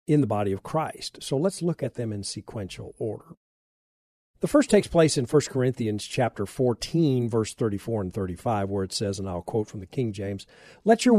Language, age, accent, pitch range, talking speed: English, 50-69, American, 105-145 Hz, 205 wpm